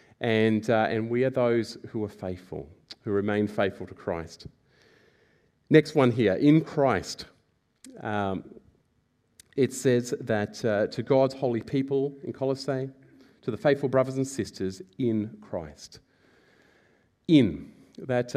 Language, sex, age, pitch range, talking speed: English, male, 40-59, 115-160 Hz, 130 wpm